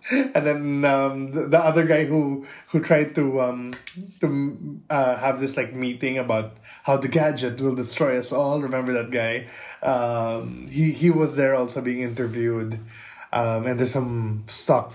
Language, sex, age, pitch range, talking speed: English, male, 20-39, 110-140 Hz, 165 wpm